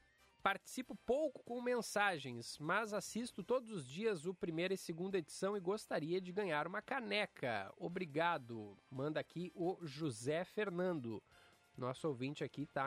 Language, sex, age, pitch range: Portuguese, male, 20-39, 135-190 Hz